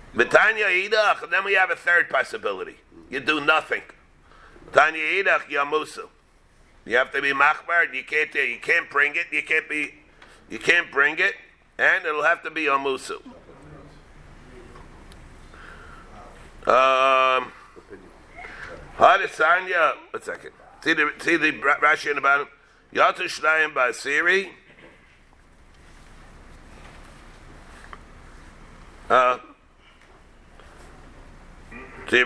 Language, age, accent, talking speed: English, 50-69, American, 100 wpm